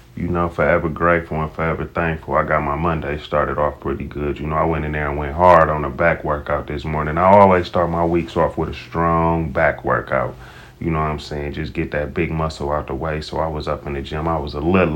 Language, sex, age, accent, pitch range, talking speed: English, male, 30-49, American, 80-100 Hz, 260 wpm